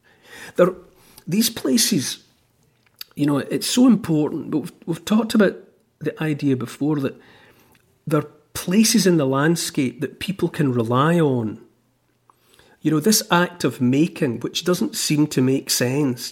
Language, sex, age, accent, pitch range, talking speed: English, male, 40-59, British, 130-175 Hz, 145 wpm